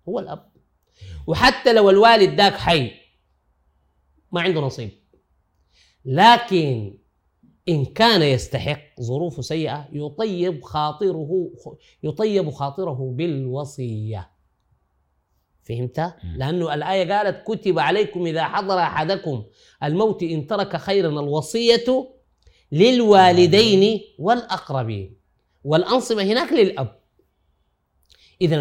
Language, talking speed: Arabic, 85 wpm